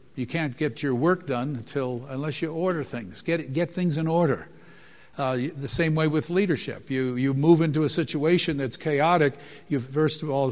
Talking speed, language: 195 wpm, English